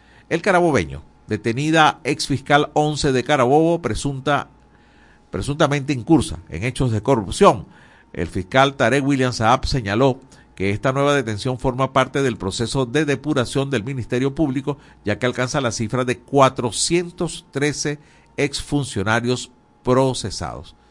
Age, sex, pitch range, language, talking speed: 50-69, male, 115-145 Hz, Spanish, 120 wpm